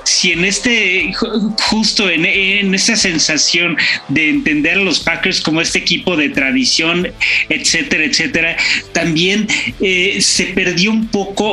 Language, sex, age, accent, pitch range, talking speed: Spanish, male, 40-59, Mexican, 175-235 Hz, 135 wpm